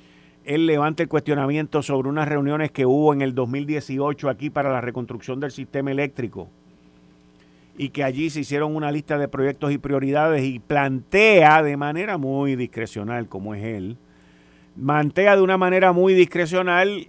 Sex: male